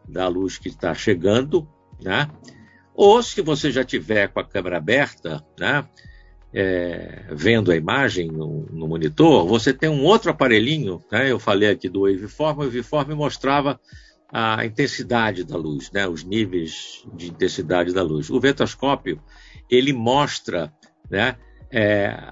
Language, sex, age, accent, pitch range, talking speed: Portuguese, male, 50-69, Brazilian, 90-130 Hz, 145 wpm